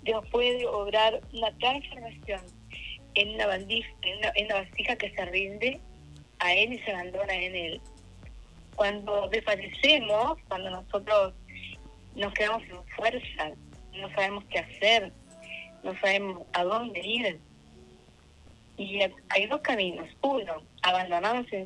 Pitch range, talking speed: 175-230 Hz, 115 wpm